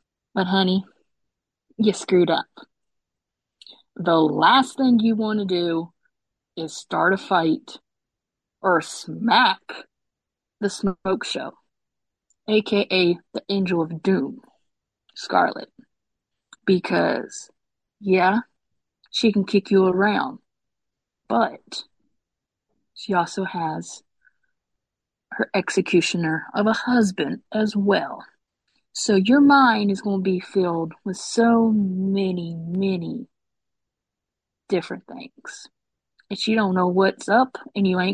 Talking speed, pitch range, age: 105 wpm, 185-215 Hz, 30-49